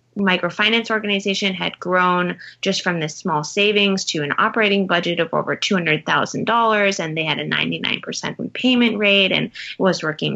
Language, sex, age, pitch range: English, female, 20-39, 155-195 Hz